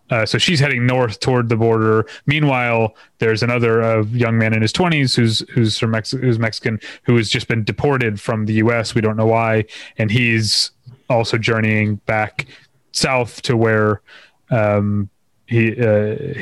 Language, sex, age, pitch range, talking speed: English, male, 30-49, 110-130 Hz, 170 wpm